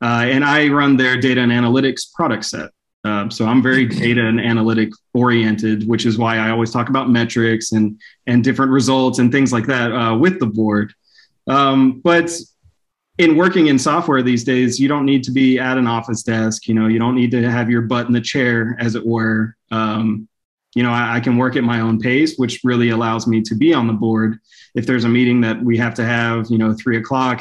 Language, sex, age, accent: English, male, 20-39, American